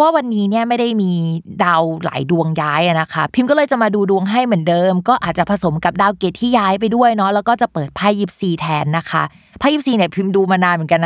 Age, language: 20-39, Thai